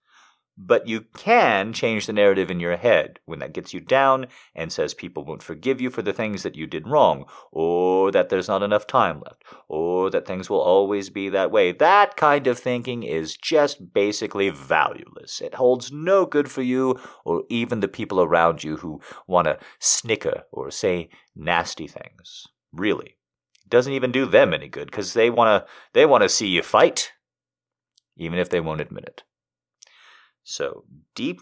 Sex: male